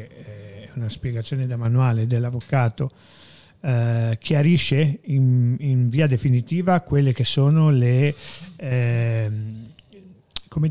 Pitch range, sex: 125-155 Hz, male